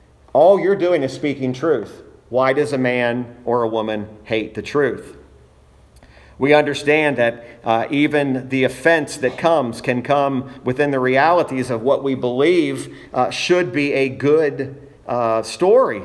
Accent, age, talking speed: American, 50-69, 155 wpm